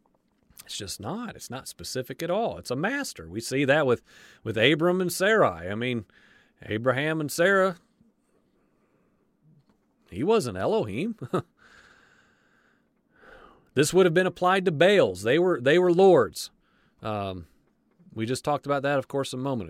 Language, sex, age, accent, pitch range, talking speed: English, male, 40-59, American, 120-160 Hz, 150 wpm